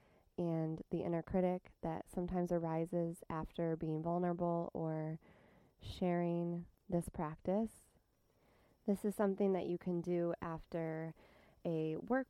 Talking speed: 115 wpm